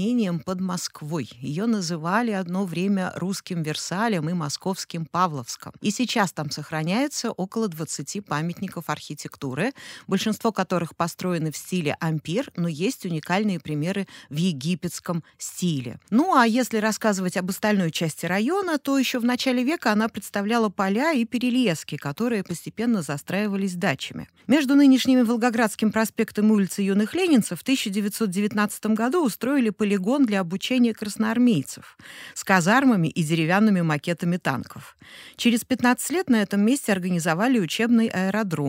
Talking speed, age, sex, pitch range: 130 wpm, 40-59, female, 175-235 Hz